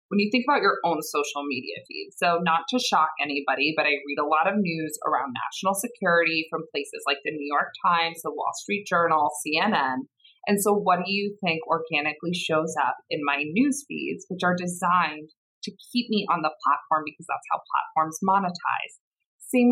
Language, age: English, 20-39